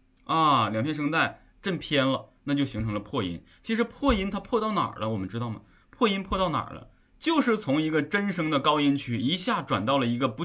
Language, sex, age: Chinese, male, 20-39